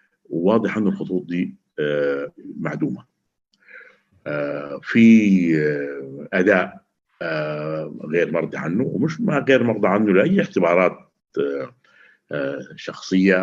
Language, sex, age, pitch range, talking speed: Arabic, male, 60-79, 75-115 Hz, 80 wpm